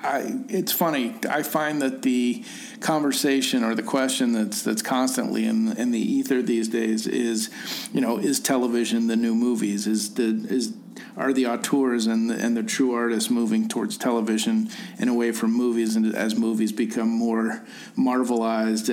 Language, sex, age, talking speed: English, male, 40-59, 170 wpm